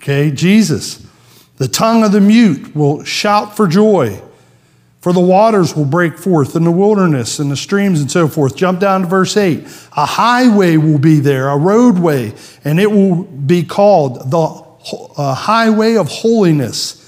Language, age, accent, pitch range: English, 50-69, American, 140-185 Hz